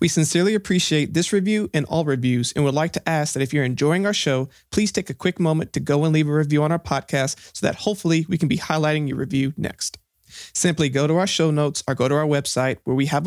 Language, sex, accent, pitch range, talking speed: English, male, American, 135-170 Hz, 260 wpm